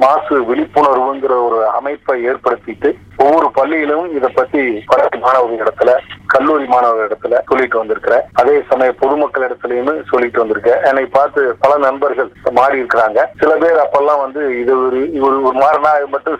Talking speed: 100 wpm